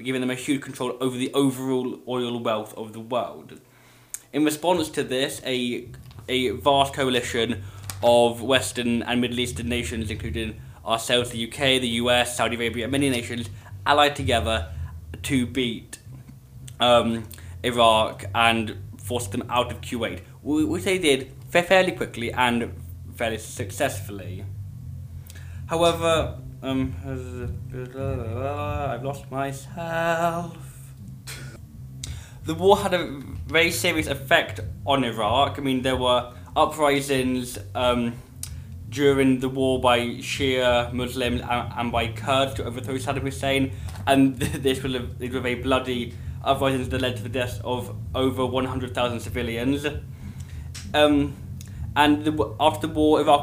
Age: 20-39